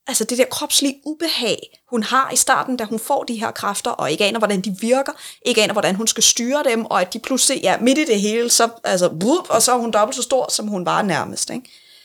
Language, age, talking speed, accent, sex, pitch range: Danish, 20-39, 265 wpm, native, female, 195-260 Hz